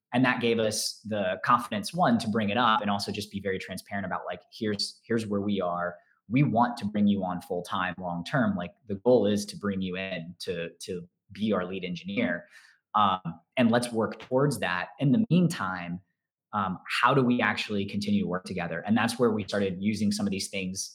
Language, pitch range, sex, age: English, 95-125 Hz, male, 20-39